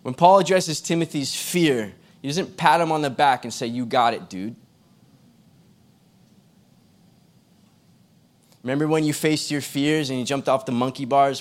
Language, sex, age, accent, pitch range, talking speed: English, male, 20-39, American, 145-185 Hz, 165 wpm